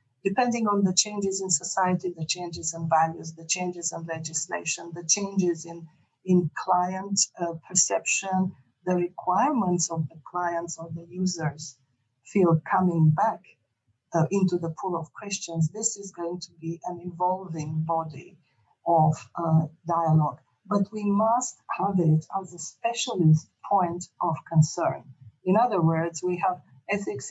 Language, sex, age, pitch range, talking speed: German, female, 50-69, 160-185 Hz, 145 wpm